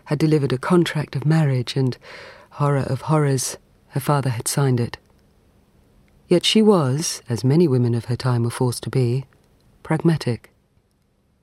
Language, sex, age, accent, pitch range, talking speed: English, female, 40-59, British, 120-160 Hz, 150 wpm